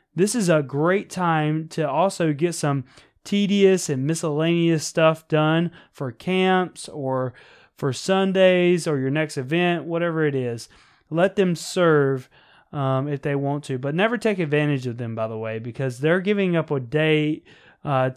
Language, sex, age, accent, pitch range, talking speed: English, male, 20-39, American, 135-180 Hz, 165 wpm